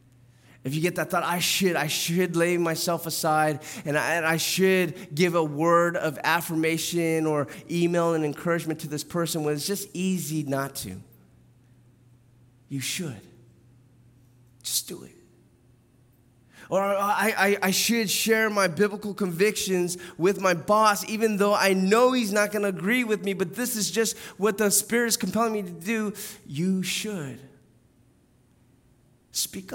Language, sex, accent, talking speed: English, male, American, 155 wpm